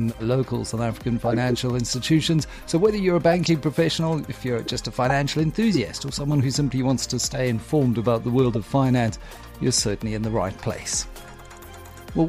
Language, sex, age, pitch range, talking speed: English, male, 50-69, 120-145 Hz, 180 wpm